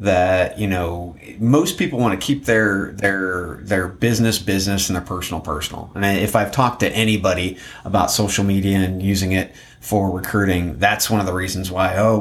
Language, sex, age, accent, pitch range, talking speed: English, male, 30-49, American, 95-115 Hz, 185 wpm